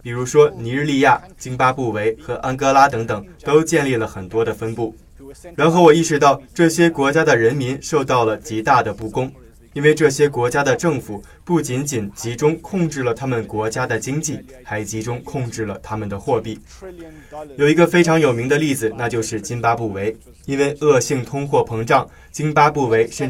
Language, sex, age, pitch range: Chinese, male, 20-39, 115-150 Hz